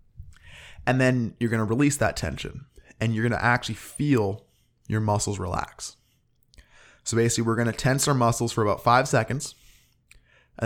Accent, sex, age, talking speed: American, male, 20-39, 170 wpm